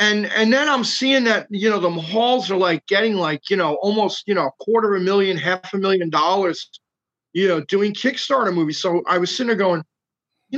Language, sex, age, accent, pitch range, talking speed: English, male, 30-49, American, 170-220 Hz, 225 wpm